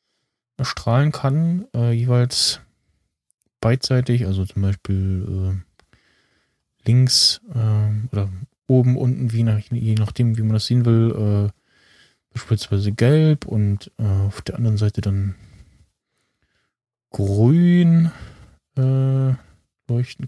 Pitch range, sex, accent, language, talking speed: 110-130 Hz, male, German, German, 105 wpm